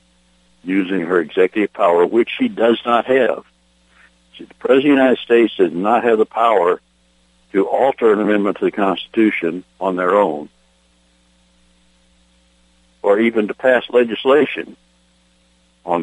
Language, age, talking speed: English, 60-79, 135 wpm